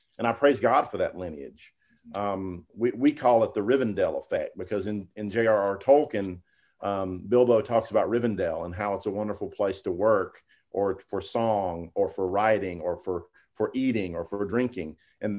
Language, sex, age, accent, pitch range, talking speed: English, male, 40-59, American, 95-120 Hz, 185 wpm